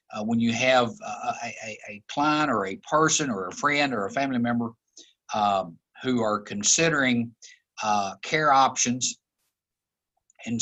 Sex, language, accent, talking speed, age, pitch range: male, English, American, 145 wpm, 60-79, 110-140 Hz